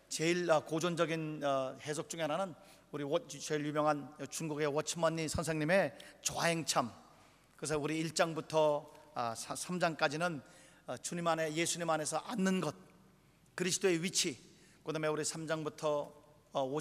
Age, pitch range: 40-59, 150-175 Hz